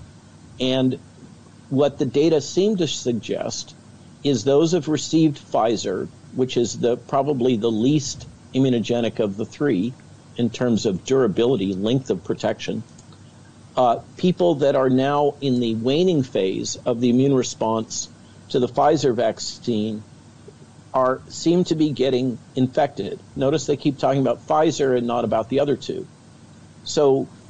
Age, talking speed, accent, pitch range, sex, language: 50-69, 140 wpm, American, 120-145 Hz, male, English